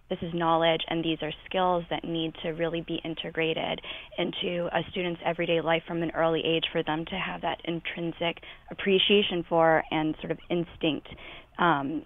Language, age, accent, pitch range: English, 20-39, American, 165-180 Hz